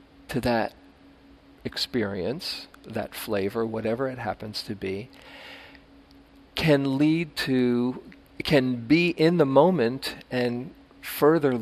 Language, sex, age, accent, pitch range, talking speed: English, male, 50-69, American, 110-130 Hz, 105 wpm